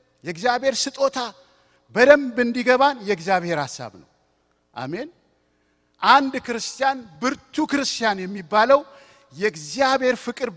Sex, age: male, 50-69